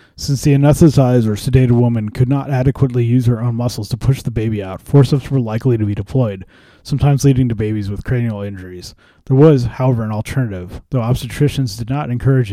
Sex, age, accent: male, 30-49, American